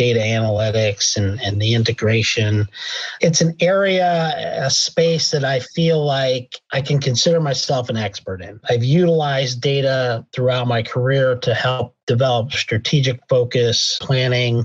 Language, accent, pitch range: English, American, 125-155 Hz